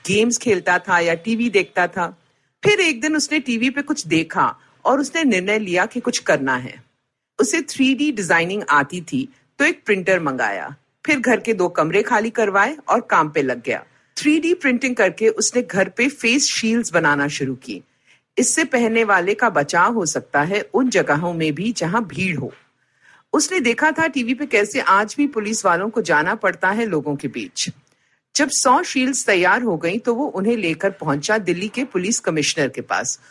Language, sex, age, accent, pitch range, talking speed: Hindi, female, 50-69, native, 170-255 Hz, 155 wpm